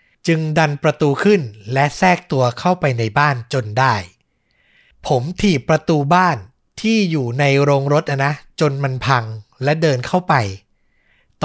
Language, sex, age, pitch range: Thai, male, 60-79, 130-175 Hz